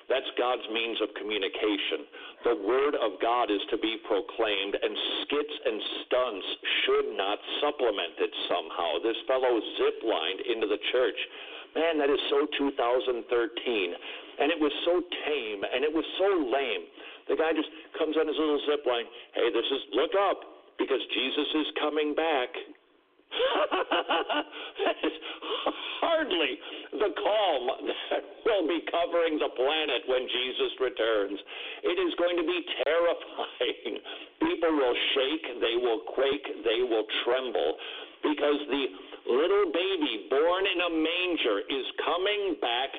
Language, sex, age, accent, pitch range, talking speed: English, male, 60-79, American, 320-435 Hz, 140 wpm